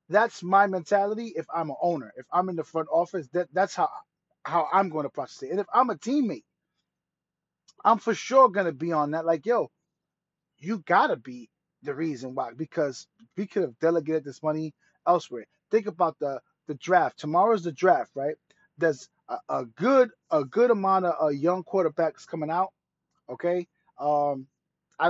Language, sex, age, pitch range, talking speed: English, male, 30-49, 150-195 Hz, 185 wpm